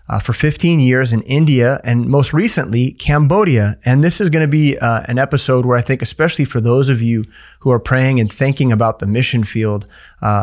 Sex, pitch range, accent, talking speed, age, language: male, 115-140 Hz, American, 215 wpm, 30-49, English